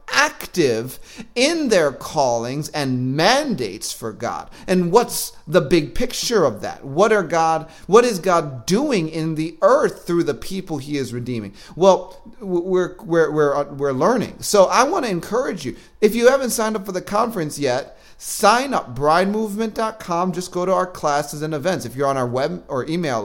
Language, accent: English, American